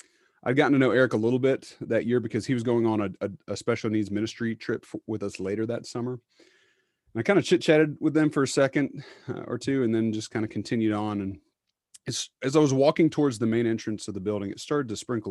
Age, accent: 30-49, American